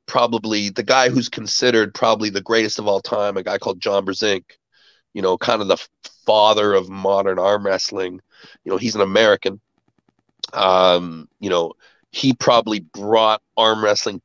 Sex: male